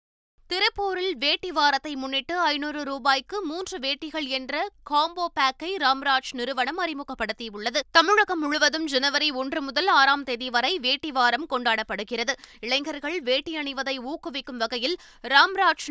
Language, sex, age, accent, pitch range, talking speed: Tamil, female, 20-39, native, 260-320 Hz, 115 wpm